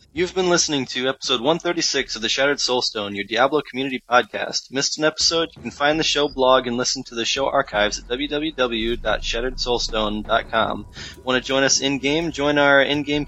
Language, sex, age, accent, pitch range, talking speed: English, male, 20-39, American, 110-135 Hz, 175 wpm